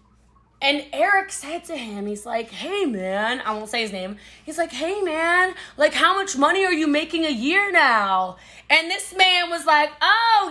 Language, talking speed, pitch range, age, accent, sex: English, 195 wpm, 235-335 Hz, 20-39, American, female